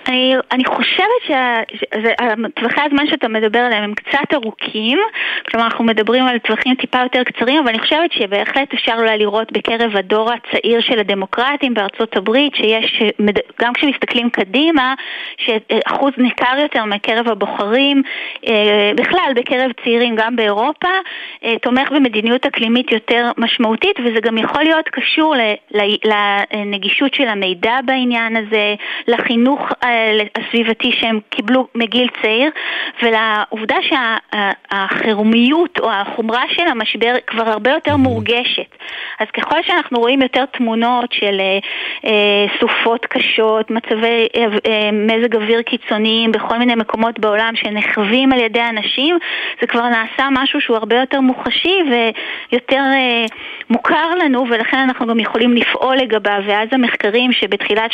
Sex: female